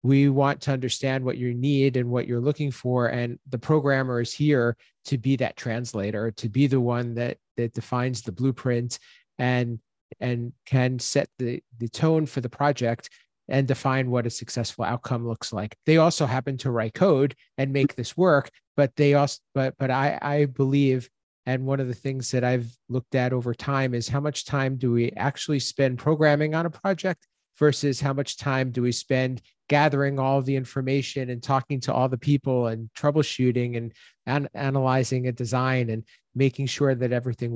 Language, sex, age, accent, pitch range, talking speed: English, male, 40-59, American, 120-140 Hz, 185 wpm